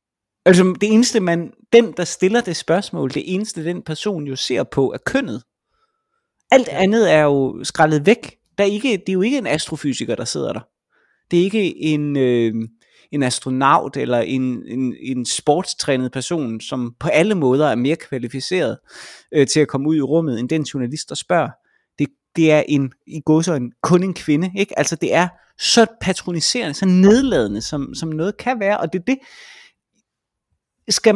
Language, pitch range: Danish, 145-200 Hz